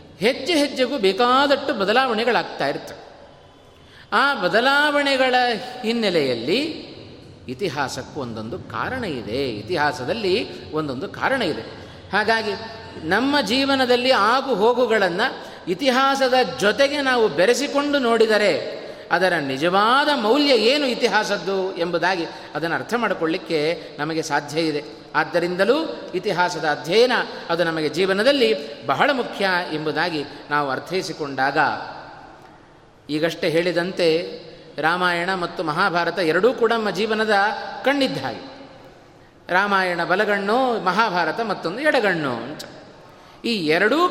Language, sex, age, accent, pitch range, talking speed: Kannada, male, 30-49, native, 170-260 Hz, 90 wpm